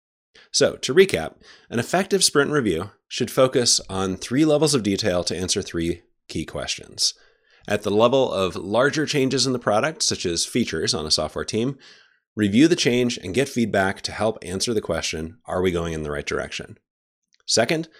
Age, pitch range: 30-49, 85-130 Hz